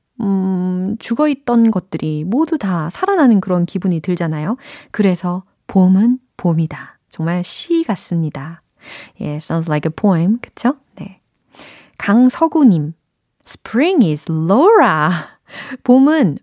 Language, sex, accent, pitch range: Korean, female, native, 165-250 Hz